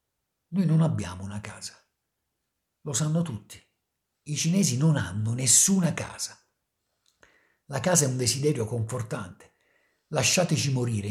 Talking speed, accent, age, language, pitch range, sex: 120 wpm, native, 50-69, Italian, 110-170 Hz, male